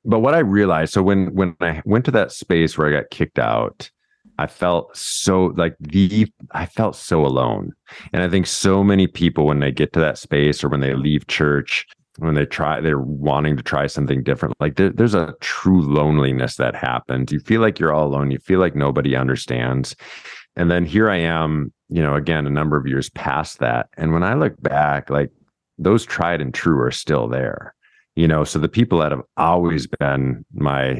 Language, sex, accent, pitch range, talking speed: English, male, American, 70-90 Hz, 205 wpm